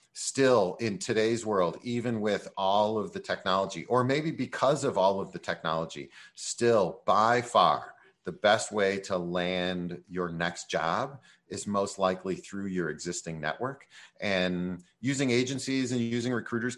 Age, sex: 40-59, male